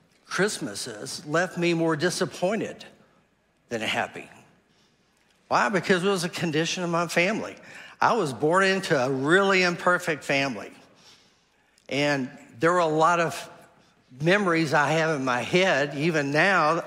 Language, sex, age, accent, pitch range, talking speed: English, male, 60-79, American, 145-180 Hz, 135 wpm